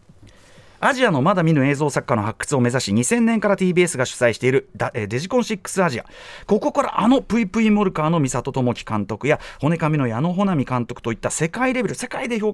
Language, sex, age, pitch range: Japanese, male, 30-49, 130-205 Hz